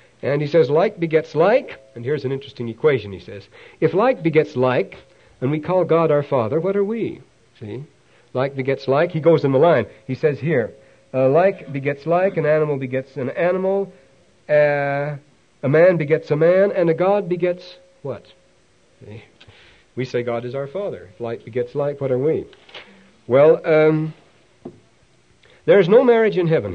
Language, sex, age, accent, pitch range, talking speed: English, male, 60-79, American, 130-175 Hz, 180 wpm